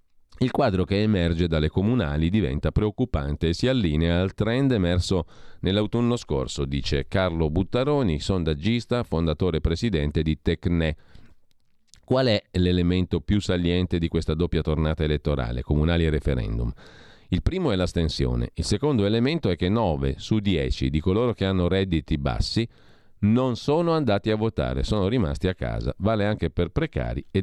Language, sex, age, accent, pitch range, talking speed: Italian, male, 40-59, native, 80-105 Hz, 155 wpm